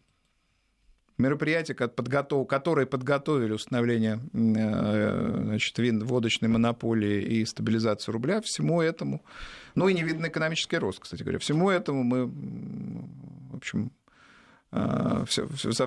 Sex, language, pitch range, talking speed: male, Russian, 110-140 Hz, 105 wpm